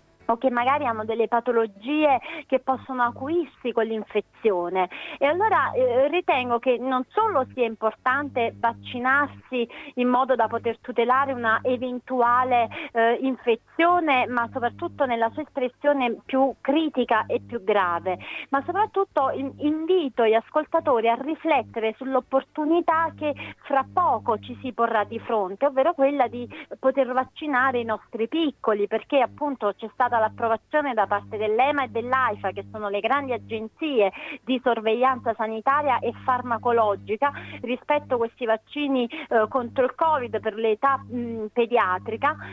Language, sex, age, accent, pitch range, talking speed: Italian, female, 30-49, native, 230-290 Hz, 135 wpm